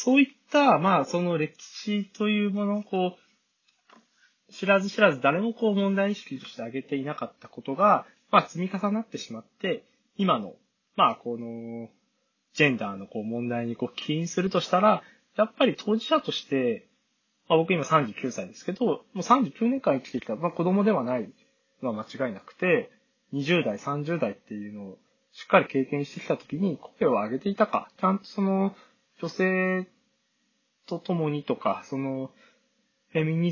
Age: 20-39